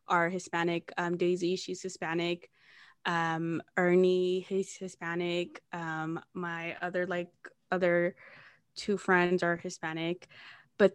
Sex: female